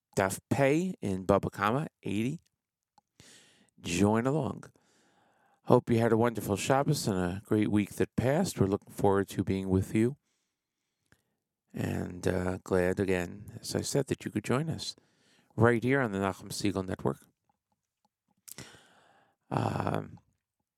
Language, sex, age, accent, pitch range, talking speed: English, male, 40-59, American, 100-130 Hz, 135 wpm